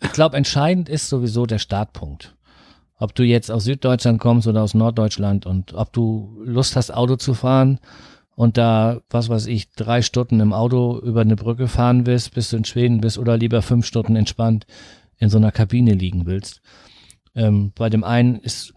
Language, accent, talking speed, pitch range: German, German, 190 wpm, 110-130 Hz